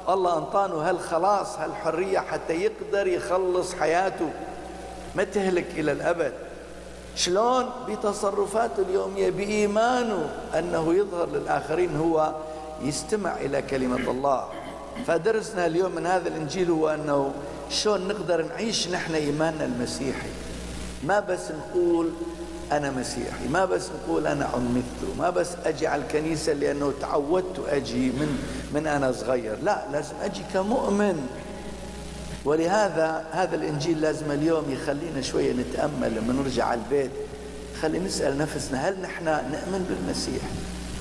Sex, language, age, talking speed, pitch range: male, English, 60-79, 115 wpm, 150-200 Hz